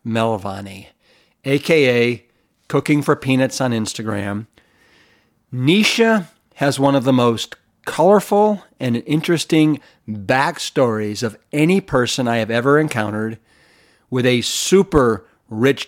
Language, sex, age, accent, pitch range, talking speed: English, male, 50-69, American, 115-145 Hz, 105 wpm